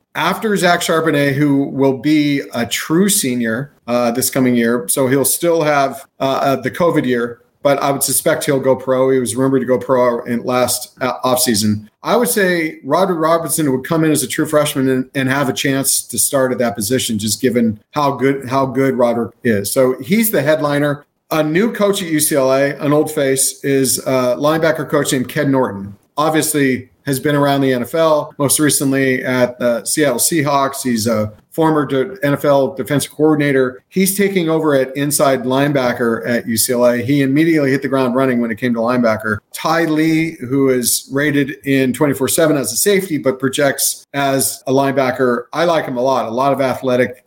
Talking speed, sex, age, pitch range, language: 190 wpm, male, 40-59, 125-150 Hz, English